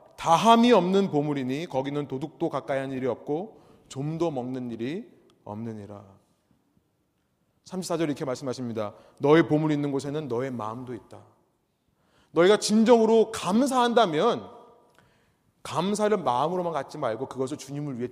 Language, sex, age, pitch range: Korean, male, 30-49, 130-210 Hz